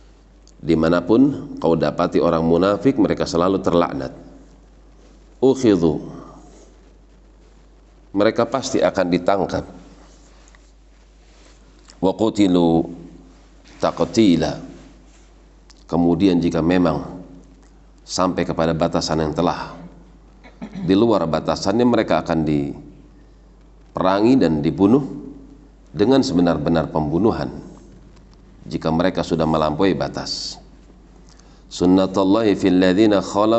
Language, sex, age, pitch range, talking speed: Indonesian, male, 40-59, 80-95 Hz, 70 wpm